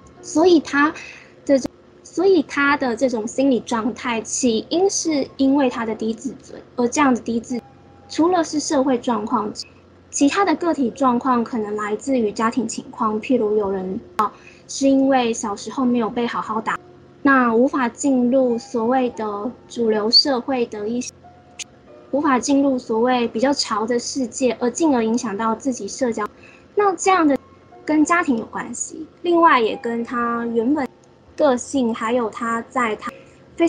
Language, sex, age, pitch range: Chinese, female, 20-39, 230-275 Hz